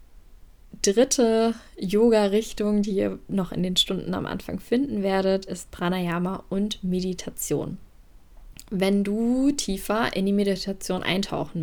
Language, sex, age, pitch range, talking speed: German, female, 10-29, 180-210 Hz, 125 wpm